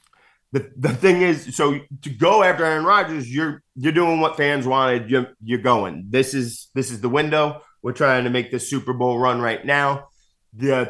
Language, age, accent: English, 20-39, American